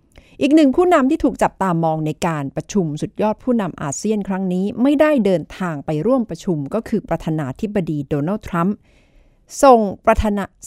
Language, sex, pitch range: Thai, female, 165-230 Hz